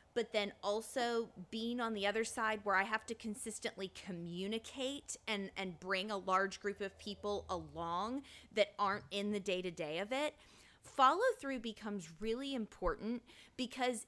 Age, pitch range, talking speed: 20-39, 200-255 Hz, 150 wpm